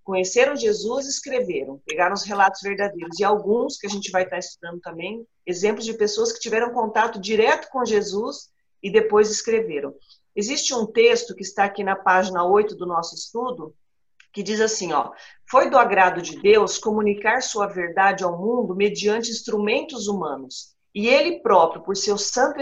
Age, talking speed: 40-59, 165 wpm